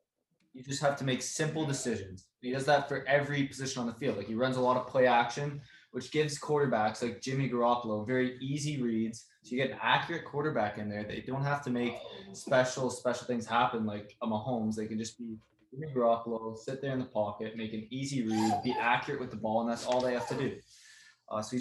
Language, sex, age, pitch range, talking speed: English, male, 20-39, 115-140 Hz, 230 wpm